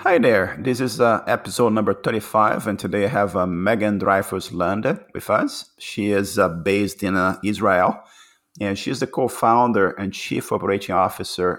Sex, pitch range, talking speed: male, 90-105 Hz, 165 wpm